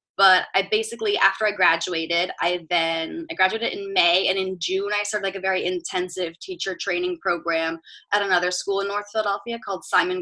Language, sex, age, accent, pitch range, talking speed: English, female, 20-39, American, 180-215 Hz, 190 wpm